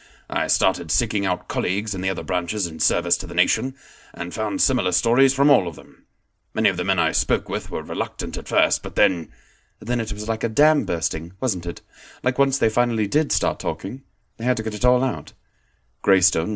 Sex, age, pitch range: male, 30-49, 85-110 Hz